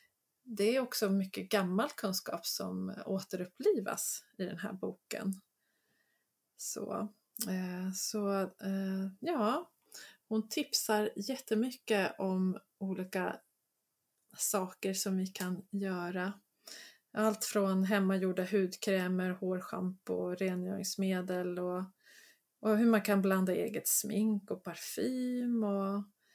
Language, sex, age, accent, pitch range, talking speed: Swedish, female, 20-39, native, 190-220 Hz, 95 wpm